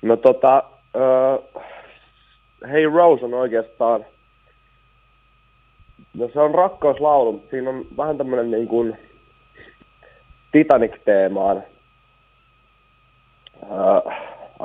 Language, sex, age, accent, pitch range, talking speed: Finnish, male, 30-49, native, 105-125 Hz, 80 wpm